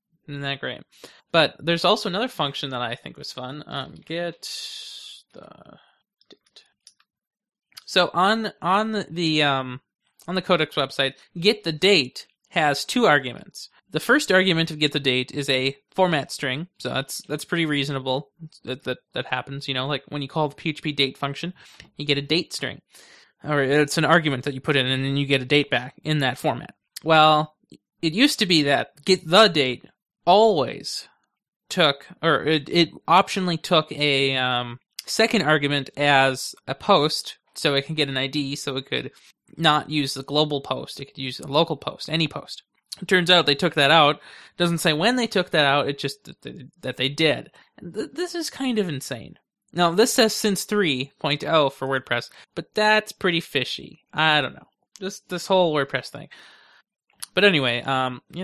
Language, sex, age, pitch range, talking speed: English, male, 20-39, 140-180 Hz, 185 wpm